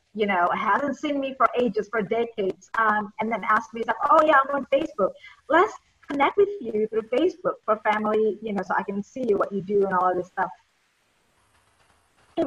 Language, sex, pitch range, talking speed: English, female, 200-255 Hz, 205 wpm